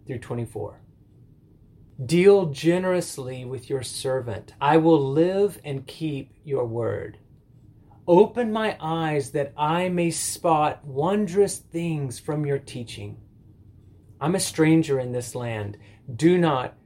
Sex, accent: male, American